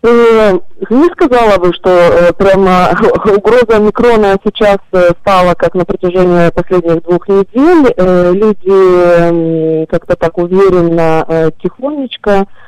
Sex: female